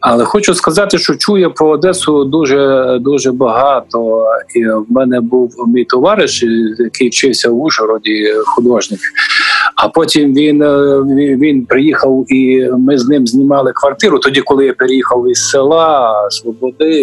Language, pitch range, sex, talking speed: Ukrainian, 120-160 Hz, male, 135 wpm